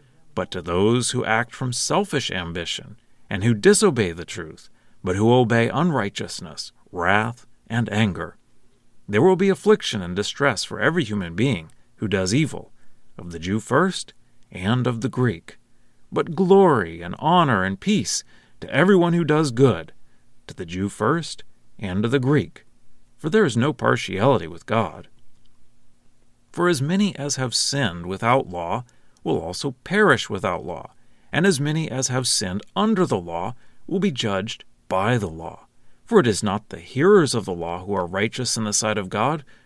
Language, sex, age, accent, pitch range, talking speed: English, male, 40-59, American, 105-150 Hz, 170 wpm